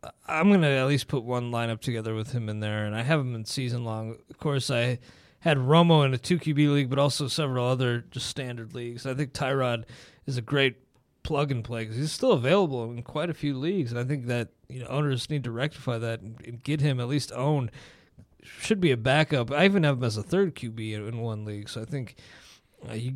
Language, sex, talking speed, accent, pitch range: English, male, 230 wpm, American, 120-150 Hz